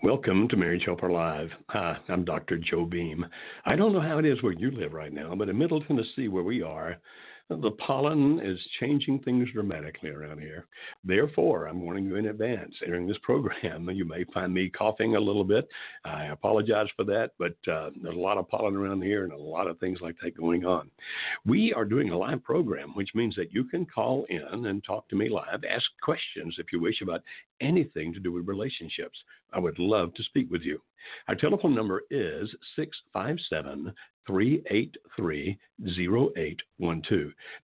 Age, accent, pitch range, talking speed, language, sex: 60-79, American, 85-120 Hz, 185 wpm, English, male